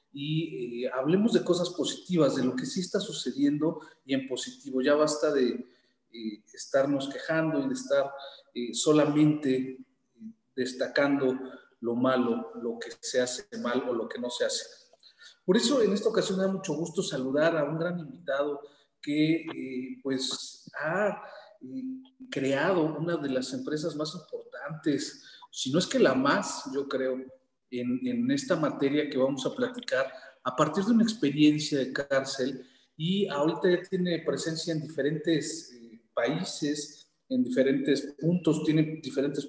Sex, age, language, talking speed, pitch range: male, 40-59, Spanish, 155 wpm, 135-190 Hz